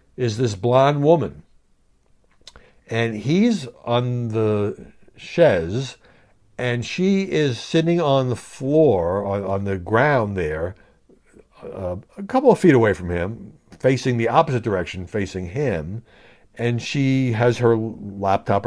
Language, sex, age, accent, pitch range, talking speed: English, male, 60-79, American, 110-180 Hz, 130 wpm